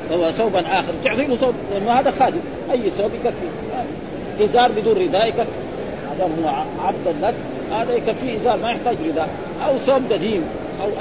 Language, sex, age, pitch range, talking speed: Arabic, male, 50-69, 180-230 Hz, 140 wpm